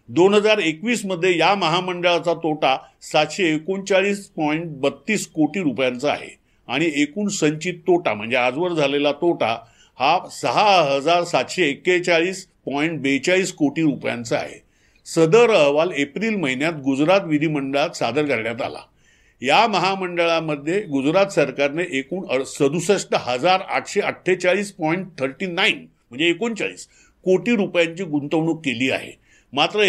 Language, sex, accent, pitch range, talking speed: English, male, Indian, 145-185 Hz, 100 wpm